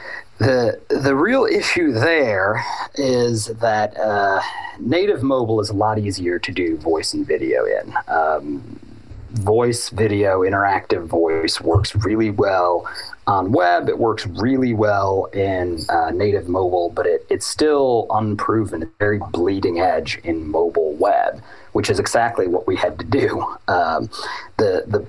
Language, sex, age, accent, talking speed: English, male, 30-49, American, 145 wpm